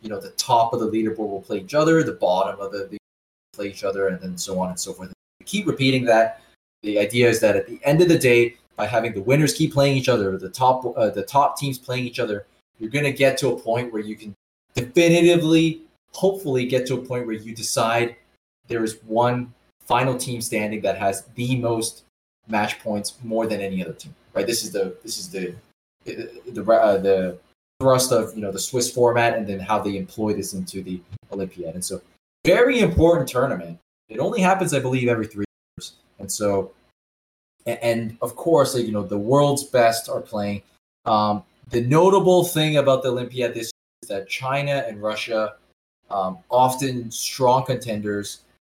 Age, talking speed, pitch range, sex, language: 20-39, 200 wpm, 100-130 Hz, male, English